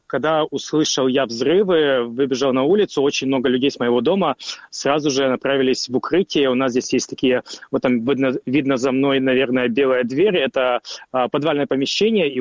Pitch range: 135-160 Hz